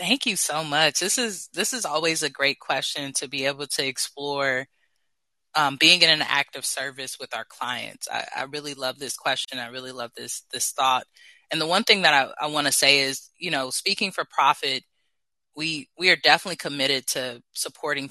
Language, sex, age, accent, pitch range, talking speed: English, female, 20-39, American, 130-155 Hz, 200 wpm